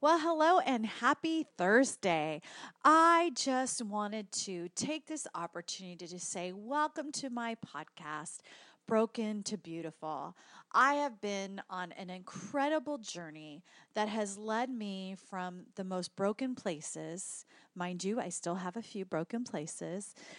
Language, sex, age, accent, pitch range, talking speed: English, female, 30-49, American, 180-240 Hz, 135 wpm